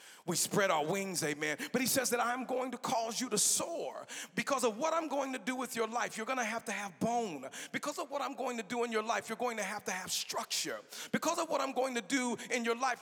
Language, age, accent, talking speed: English, 40-59, American, 275 wpm